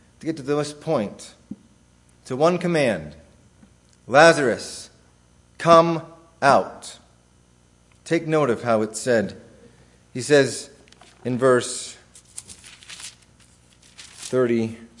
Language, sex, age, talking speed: English, male, 40-59, 90 wpm